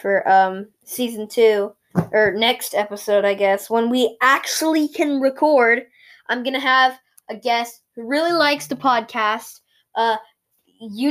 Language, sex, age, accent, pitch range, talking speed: English, female, 10-29, American, 205-250 Hz, 140 wpm